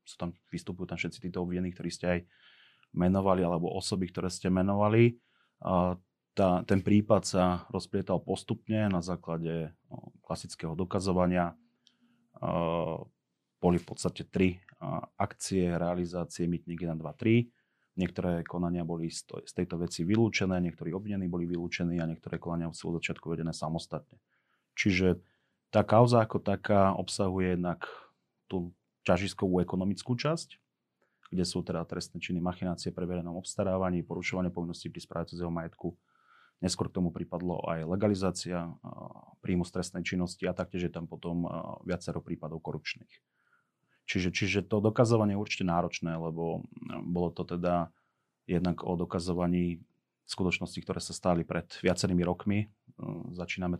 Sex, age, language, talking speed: male, 30-49, Slovak, 135 wpm